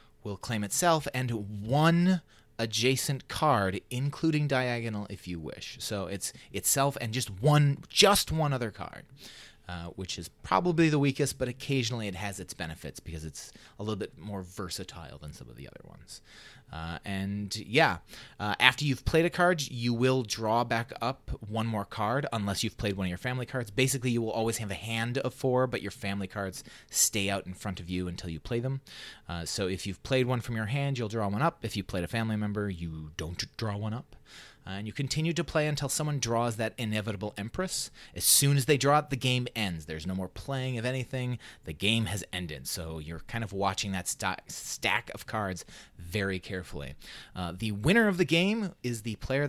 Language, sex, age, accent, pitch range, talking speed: English, male, 30-49, American, 95-130 Hz, 205 wpm